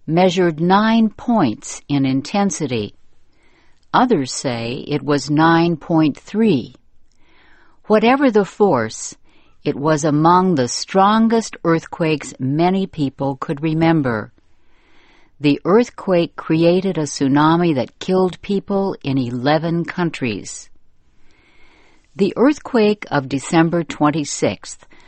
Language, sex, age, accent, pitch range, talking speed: English, female, 60-79, American, 140-195 Hz, 95 wpm